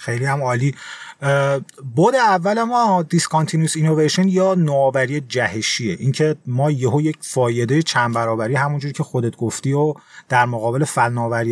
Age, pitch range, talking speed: 30-49, 130-170 Hz, 135 wpm